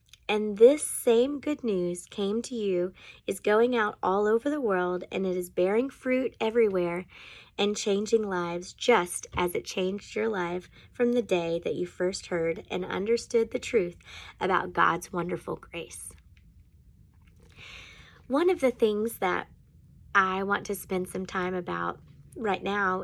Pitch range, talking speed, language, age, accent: 175-230 Hz, 155 wpm, English, 20-39, American